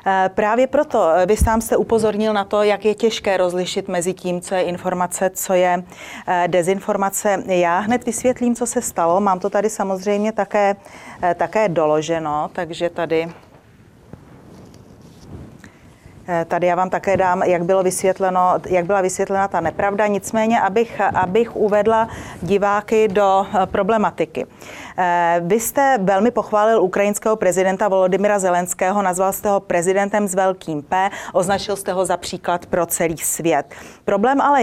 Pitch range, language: 180-220 Hz, Czech